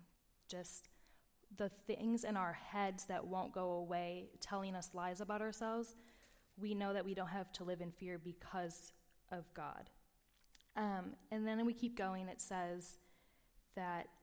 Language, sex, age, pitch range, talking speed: English, female, 10-29, 180-205 Hz, 155 wpm